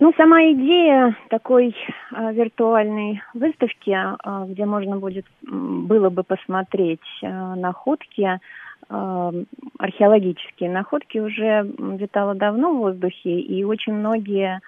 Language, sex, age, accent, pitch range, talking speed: Russian, female, 30-49, native, 185-245 Hz, 110 wpm